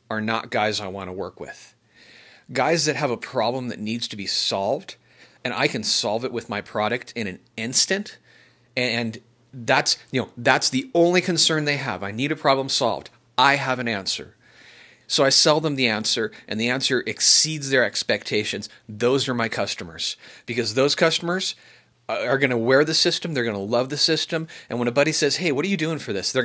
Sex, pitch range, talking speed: male, 115-155 Hz, 200 wpm